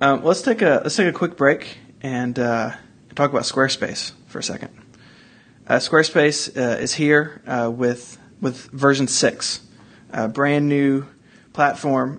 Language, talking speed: English, 155 wpm